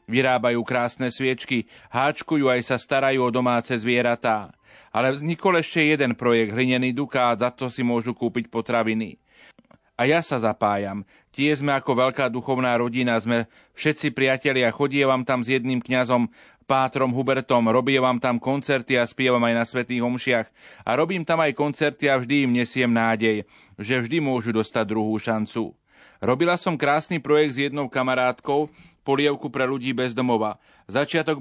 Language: Slovak